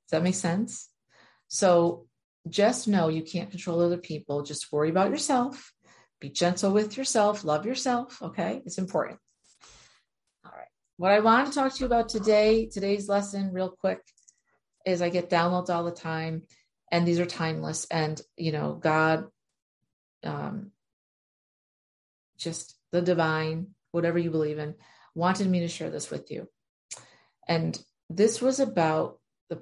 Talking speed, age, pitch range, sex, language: 150 wpm, 40-59, 160-200 Hz, female, English